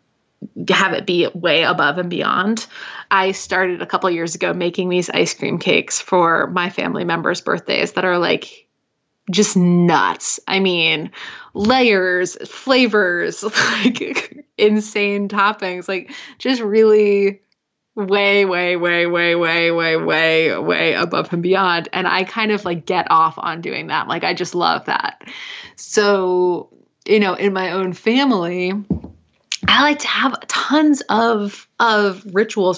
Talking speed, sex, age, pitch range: 145 wpm, female, 20-39, 180-215 Hz